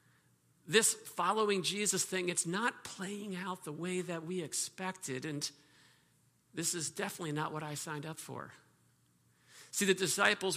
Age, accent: 50-69, American